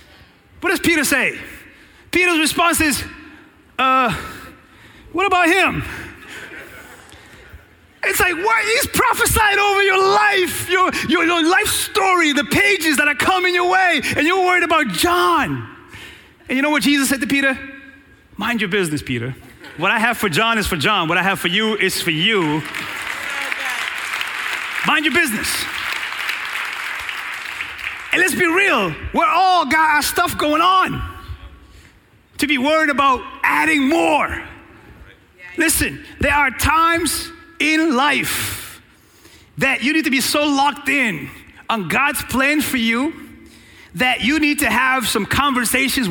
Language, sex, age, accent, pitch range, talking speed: English, male, 30-49, American, 245-335 Hz, 145 wpm